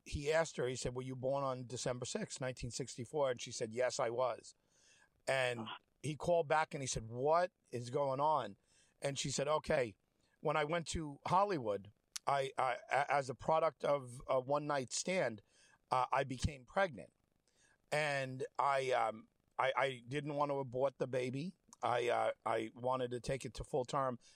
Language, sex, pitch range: English, male, 125-150 Hz